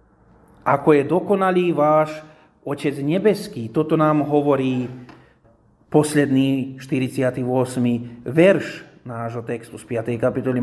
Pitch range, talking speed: 140-185 Hz, 95 wpm